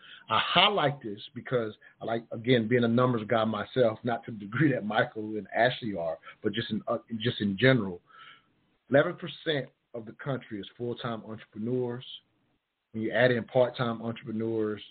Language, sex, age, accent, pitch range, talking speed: English, male, 40-59, American, 115-135 Hz, 170 wpm